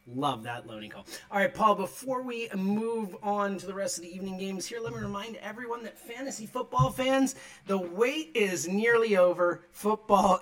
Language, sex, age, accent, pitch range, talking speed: English, male, 30-49, American, 150-230 Hz, 190 wpm